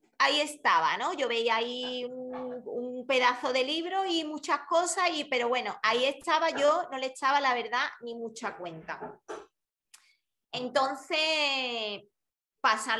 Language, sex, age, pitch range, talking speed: Spanish, female, 20-39, 210-295 Hz, 140 wpm